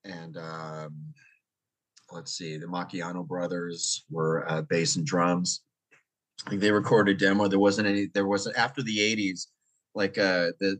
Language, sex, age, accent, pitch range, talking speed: English, male, 30-49, American, 85-95 Hz, 155 wpm